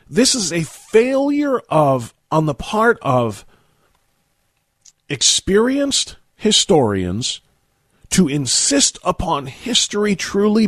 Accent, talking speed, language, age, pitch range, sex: American, 90 wpm, English, 40-59, 120-180 Hz, male